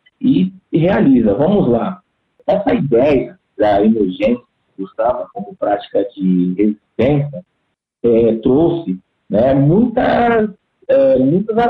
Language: Portuguese